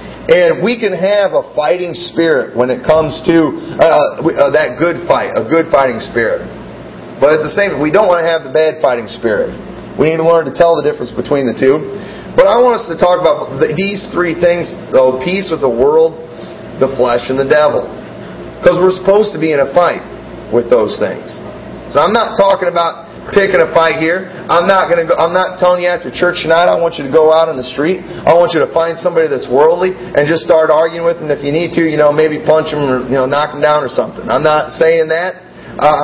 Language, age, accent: English, 40-59, American